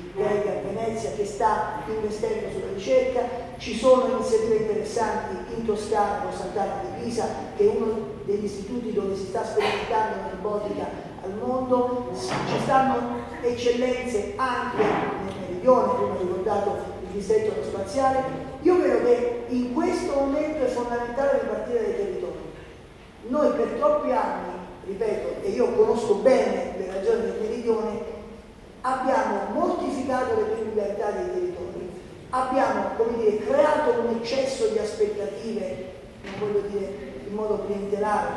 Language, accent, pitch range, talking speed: Italian, native, 205-270 Hz, 135 wpm